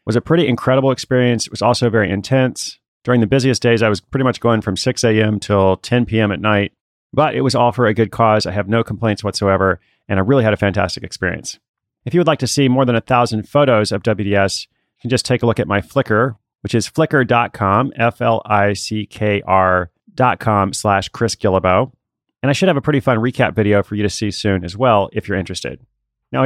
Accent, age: American, 30-49